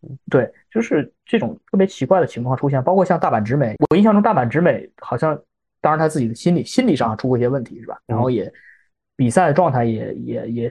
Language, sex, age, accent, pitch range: Chinese, male, 20-39, native, 120-165 Hz